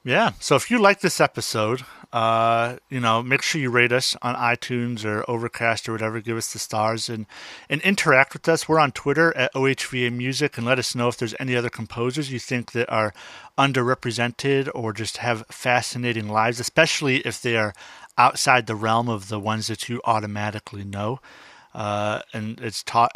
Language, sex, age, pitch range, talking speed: English, male, 40-59, 115-130 Hz, 190 wpm